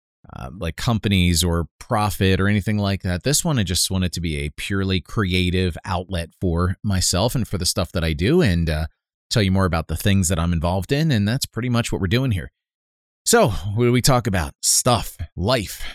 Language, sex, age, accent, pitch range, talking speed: English, male, 30-49, American, 85-110 Hz, 220 wpm